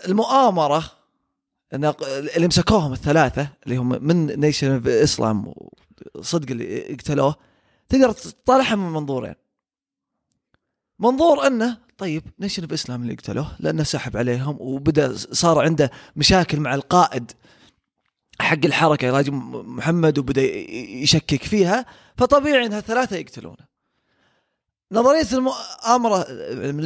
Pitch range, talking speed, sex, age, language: 150-230 Hz, 105 wpm, male, 20-39, Arabic